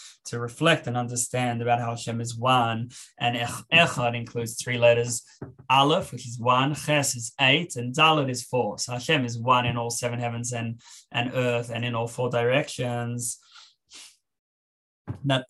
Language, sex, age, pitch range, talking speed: English, male, 20-39, 115-130 Hz, 165 wpm